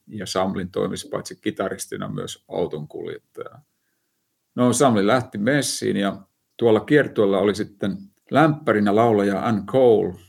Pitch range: 95-115 Hz